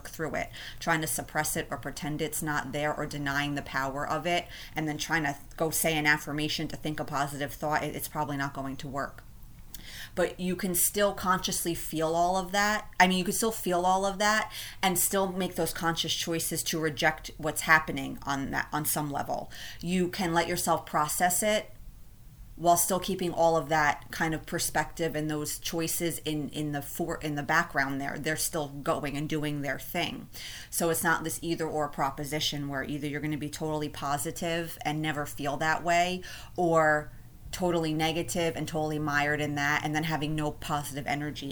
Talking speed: 195 wpm